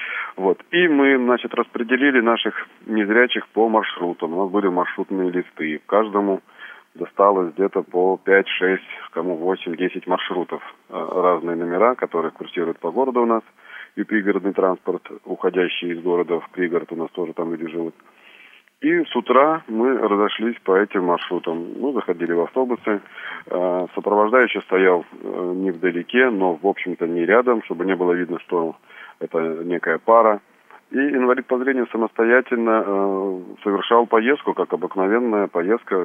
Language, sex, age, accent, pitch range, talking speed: Russian, male, 30-49, native, 90-115 Hz, 140 wpm